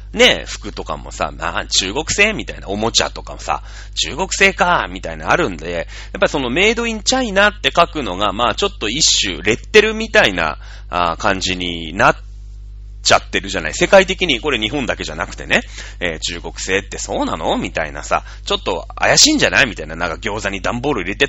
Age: 30-49